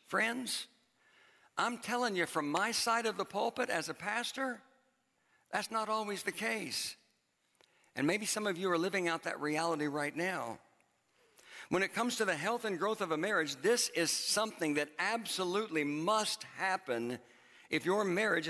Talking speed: 165 wpm